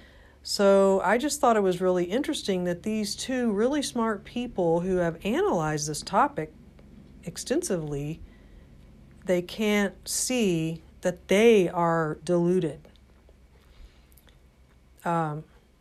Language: English